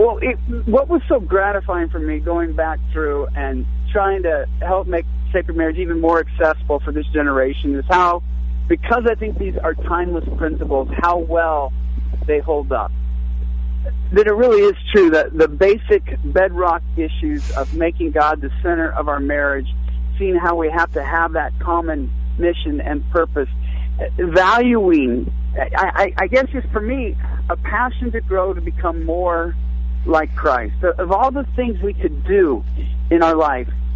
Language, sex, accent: English, male, American